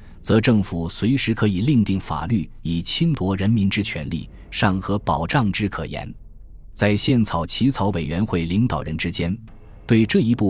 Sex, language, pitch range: male, Chinese, 85-115 Hz